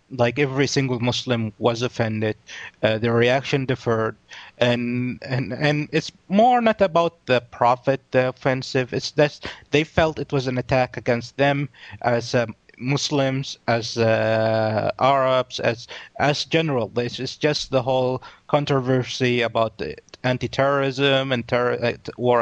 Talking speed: 140 wpm